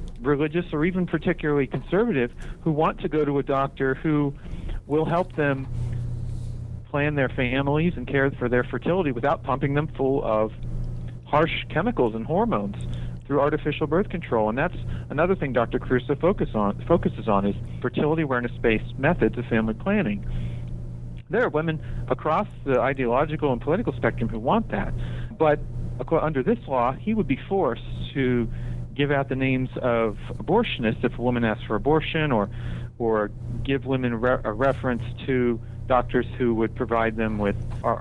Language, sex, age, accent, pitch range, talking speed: English, male, 50-69, American, 115-150 Hz, 160 wpm